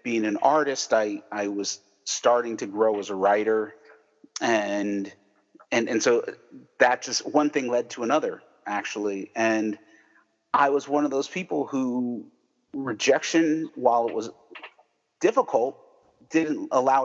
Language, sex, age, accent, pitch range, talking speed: English, male, 40-59, American, 105-130 Hz, 135 wpm